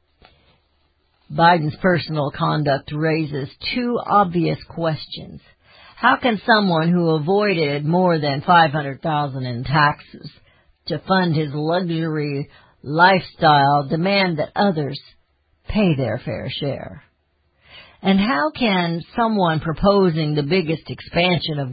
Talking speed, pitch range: 110 wpm, 120-195 Hz